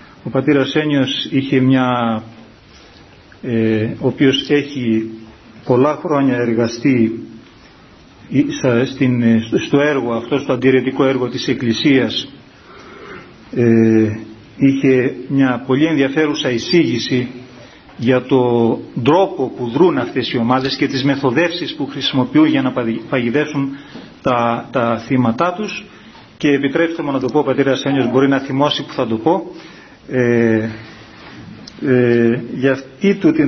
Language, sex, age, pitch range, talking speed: Greek, male, 40-59, 120-145 Hz, 120 wpm